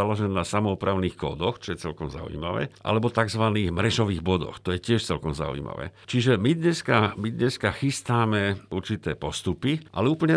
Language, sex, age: Slovak, male, 50-69